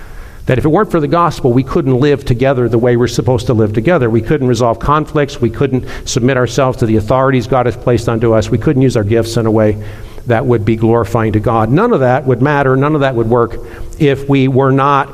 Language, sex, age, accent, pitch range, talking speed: English, male, 50-69, American, 115-145 Hz, 245 wpm